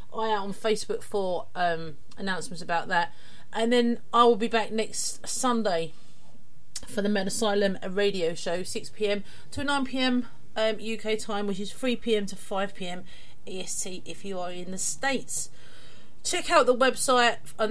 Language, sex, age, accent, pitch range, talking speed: English, female, 40-59, British, 195-240 Hz, 170 wpm